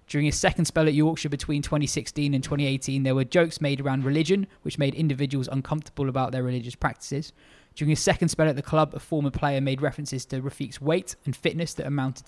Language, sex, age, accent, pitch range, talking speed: English, male, 20-39, British, 130-155 Hz, 210 wpm